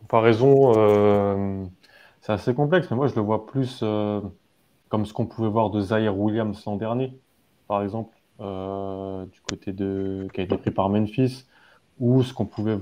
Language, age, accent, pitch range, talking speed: French, 20-39, French, 100-115 Hz, 185 wpm